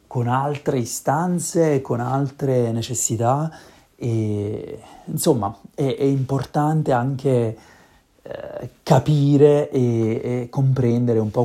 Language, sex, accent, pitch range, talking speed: Italian, male, native, 110-135 Hz, 100 wpm